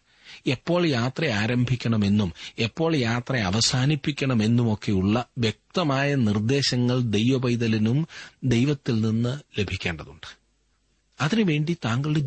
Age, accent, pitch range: 40-59, native, 90-125 Hz